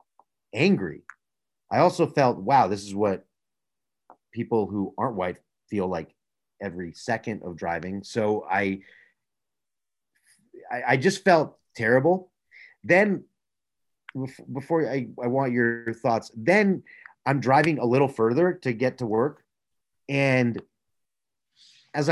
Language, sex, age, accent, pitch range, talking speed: English, male, 30-49, American, 105-140 Hz, 120 wpm